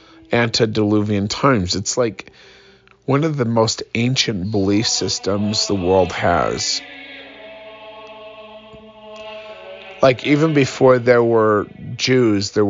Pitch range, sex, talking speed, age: 100-135 Hz, male, 100 wpm, 40-59